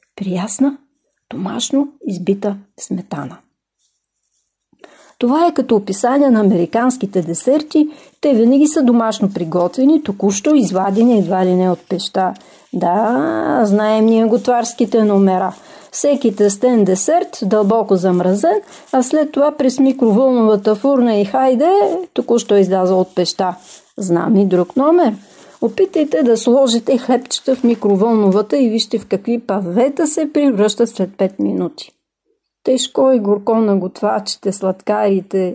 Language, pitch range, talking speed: English, 200-275 Hz, 120 wpm